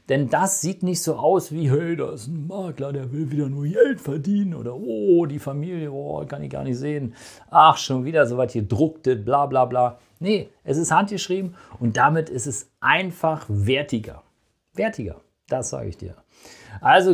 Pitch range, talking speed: 130-175 Hz, 185 wpm